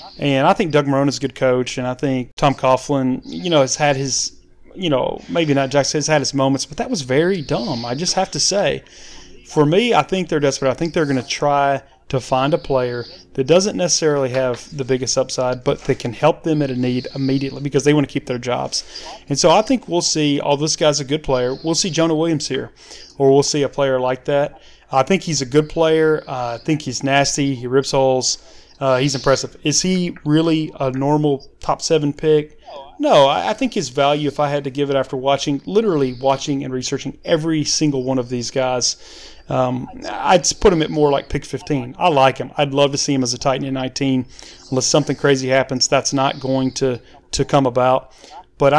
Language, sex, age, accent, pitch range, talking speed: English, male, 30-49, American, 130-150 Hz, 225 wpm